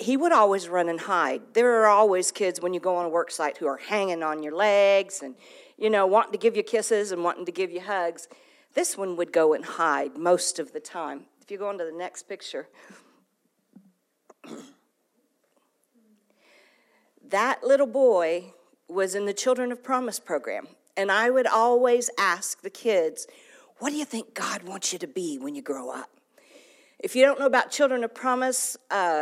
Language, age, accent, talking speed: English, 50-69, American, 195 wpm